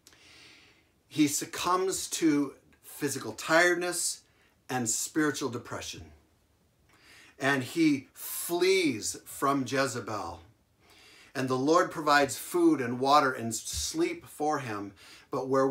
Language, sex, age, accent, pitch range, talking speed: English, male, 50-69, American, 110-150 Hz, 100 wpm